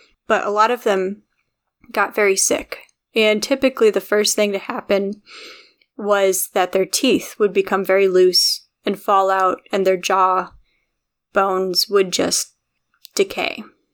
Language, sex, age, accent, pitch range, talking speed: English, female, 10-29, American, 195-230 Hz, 140 wpm